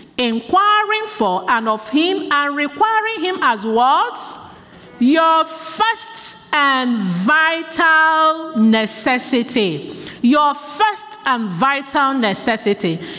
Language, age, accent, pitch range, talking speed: English, 50-69, Nigerian, 205-305 Hz, 90 wpm